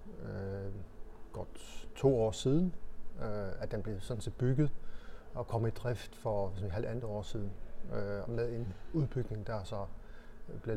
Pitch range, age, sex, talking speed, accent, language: 100-125 Hz, 30-49, male, 160 wpm, native, Danish